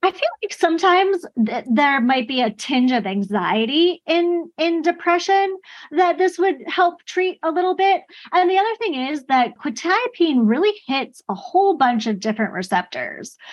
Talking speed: 170 wpm